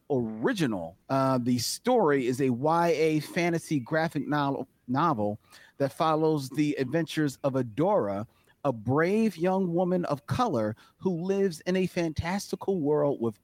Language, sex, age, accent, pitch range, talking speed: English, male, 40-59, American, 125-160 Hz, 135 wpm